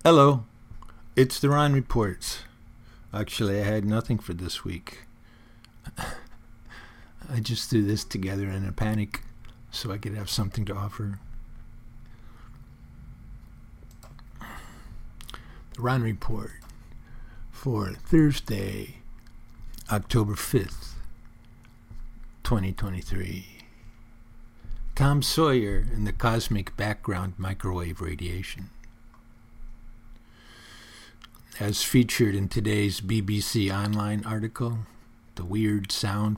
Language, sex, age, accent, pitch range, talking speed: English, male, 50-69, American, 100-115 Hz, 85 wpm